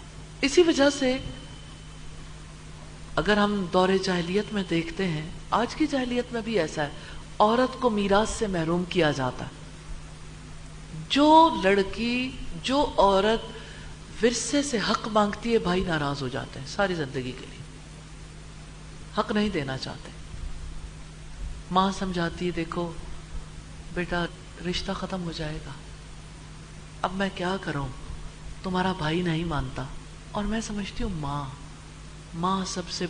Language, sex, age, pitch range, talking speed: English, female, 50-69, 140-205 Hz, 125 wpm